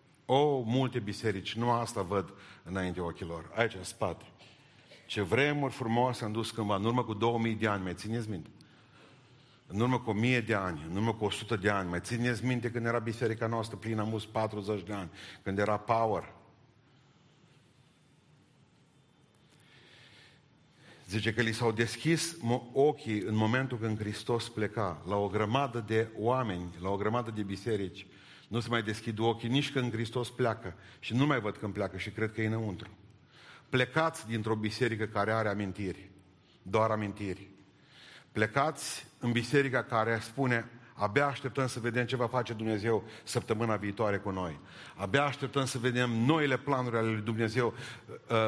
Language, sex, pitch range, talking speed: Romanian, male, 110-140 Hz, 160 wpm